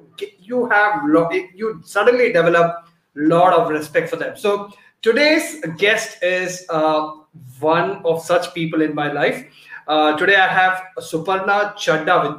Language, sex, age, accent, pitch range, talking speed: English, male, 30-49, Indian, 165-205 Hz, 145 wpm